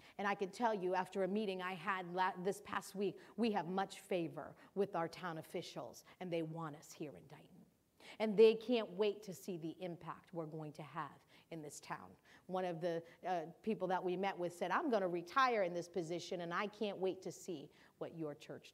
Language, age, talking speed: English, 40-59, 220 wpm